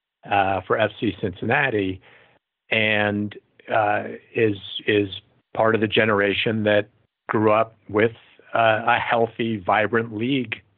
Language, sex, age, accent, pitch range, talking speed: English, male, 50-69, American, 100-115 Hz, 115 wpm